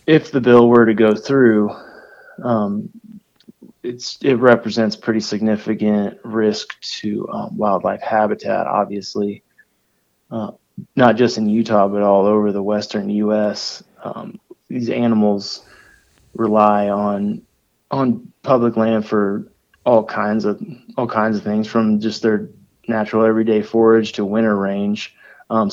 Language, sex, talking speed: English, male, 130 wpm